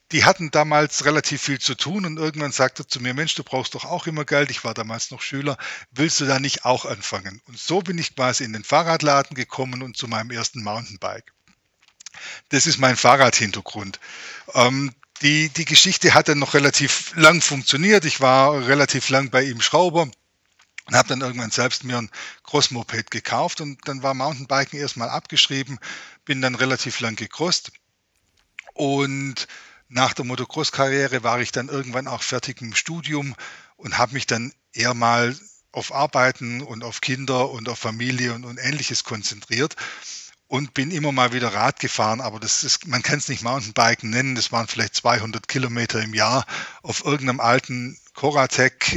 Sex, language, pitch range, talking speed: male, German, 120-145 Hz, 175 wpm